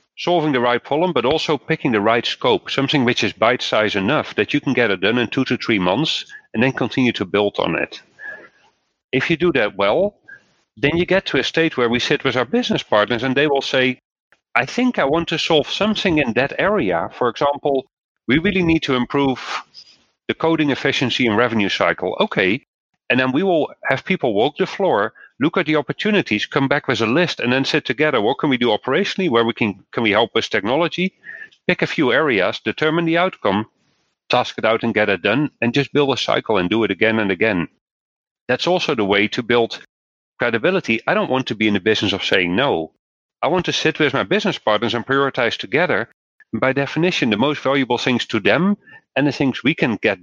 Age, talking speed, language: 40-59, 220 wpm, English